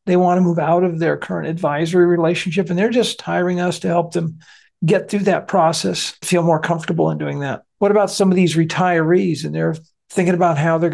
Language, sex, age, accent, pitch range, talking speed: English, male, 50-69, American, 170-205 Hz, 220 wpm